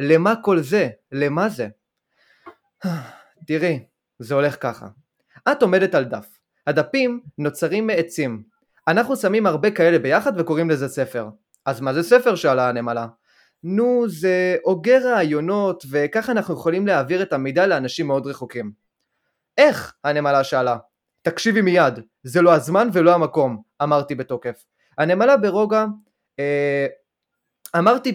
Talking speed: 125 wpm